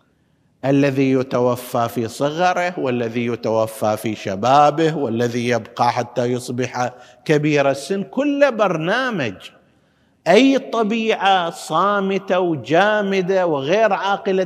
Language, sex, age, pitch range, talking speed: Arabic, male, 50-69, 115-175 Hz, 90 wpm